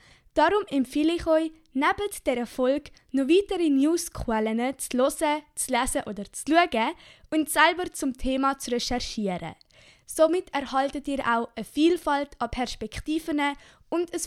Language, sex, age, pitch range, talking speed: German, female, 10-29, 245-315 Hz, 140 wpm